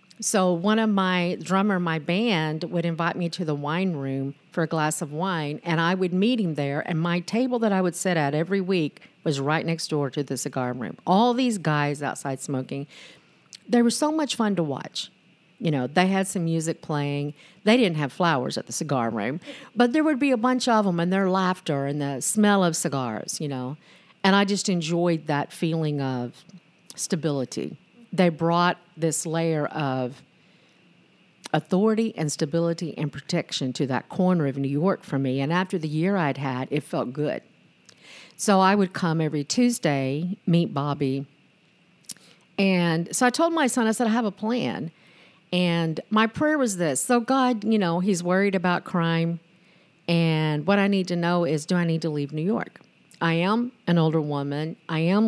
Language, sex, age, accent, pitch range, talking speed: English, female, 50-69, American, 150-195 Hz, 190 wpm